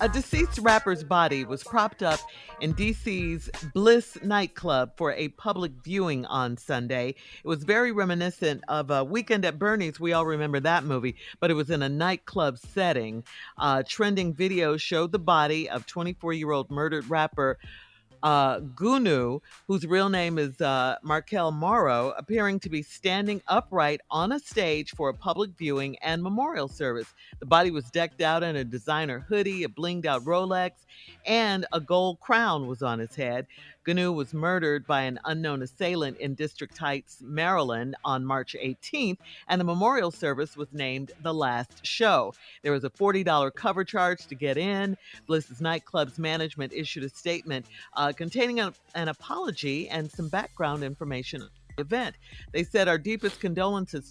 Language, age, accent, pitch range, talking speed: English, 50-69, American, 145-190 Hz, 165 wpm